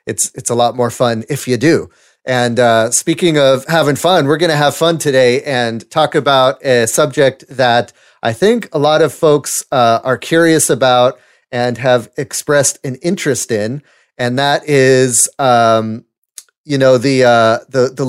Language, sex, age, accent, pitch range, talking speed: English, male, 30-49, American, 115-140 Hz, 175 wpm